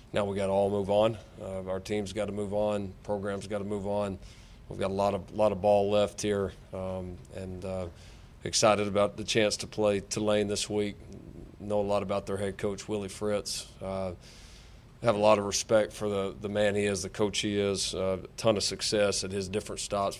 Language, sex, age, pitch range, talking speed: English, male, 40-59, 95-105 Hz, 225 wpm